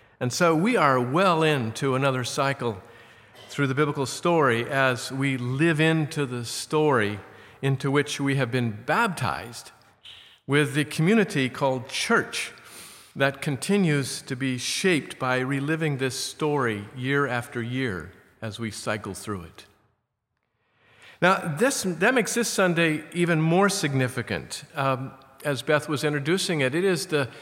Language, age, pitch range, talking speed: English, 50-69, 120-155 Hz, 140 wpm